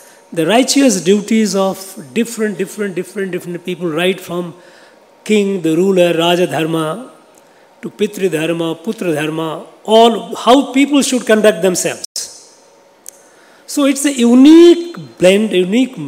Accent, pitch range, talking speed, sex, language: native, 175-225 Hz, 125 wpm, male, Tamil